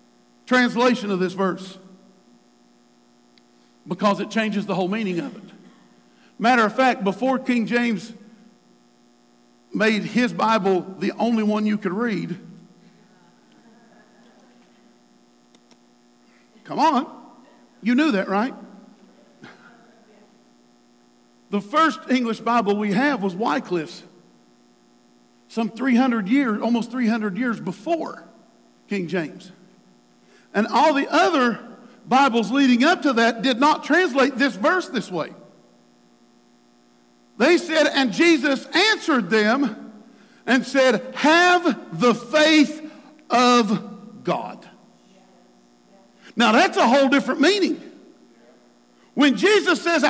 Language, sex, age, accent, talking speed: English, male, 50-69, American, 105 wpm